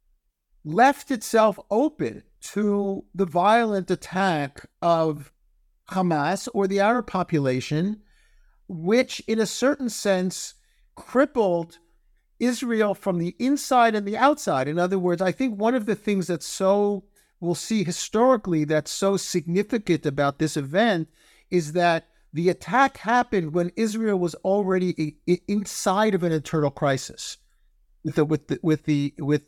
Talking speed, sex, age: 135 wpm, male, 50-69